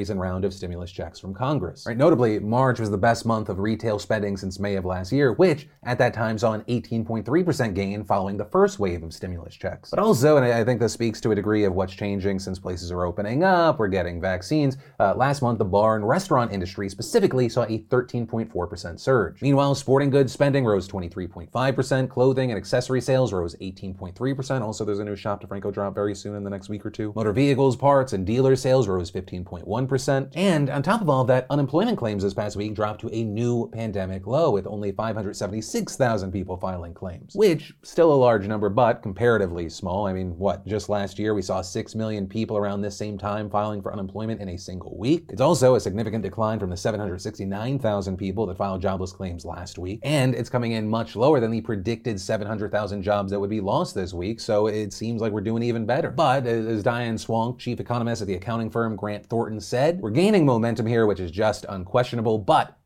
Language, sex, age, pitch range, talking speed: English, male, 30-49, 100-125 Hz, 210 wpm